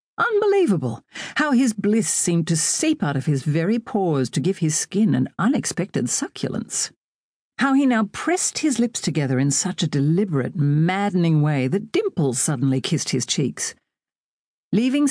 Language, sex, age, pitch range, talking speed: English, female, 50-69, 150-220 Hz, 155 wpm